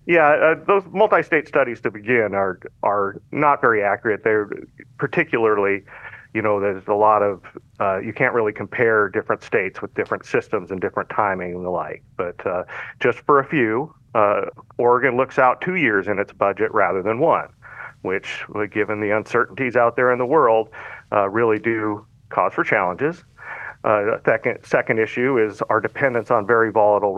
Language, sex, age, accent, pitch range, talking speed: English, male, 40-59, American, 100-120 Hz, 175 wpm